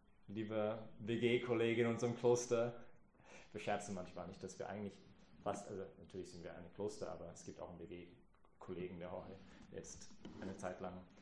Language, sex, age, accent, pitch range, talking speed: English, male, 30-49, German, 95-130 Hz, 170 wpm